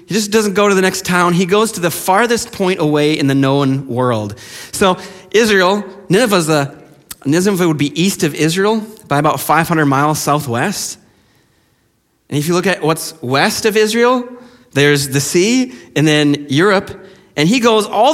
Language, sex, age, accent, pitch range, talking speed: English, male, 30-49, American, 160-235 Hz, 170 wpm